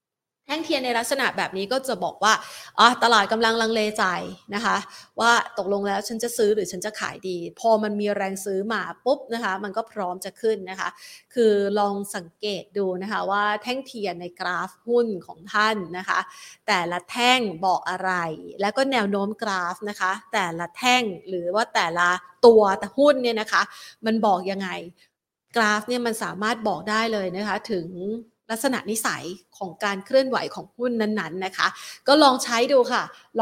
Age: 30-49